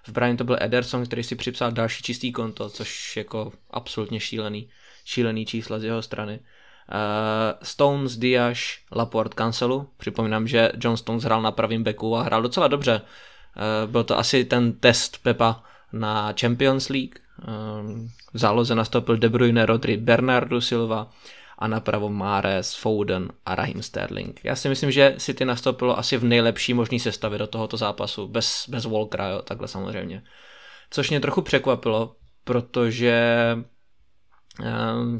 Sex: male